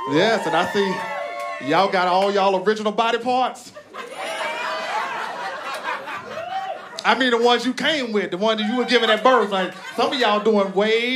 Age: 30-49